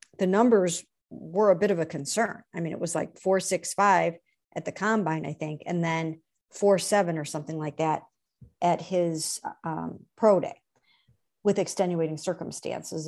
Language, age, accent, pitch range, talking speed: English, 50-69, American, 170-220 Hz, 165 wpm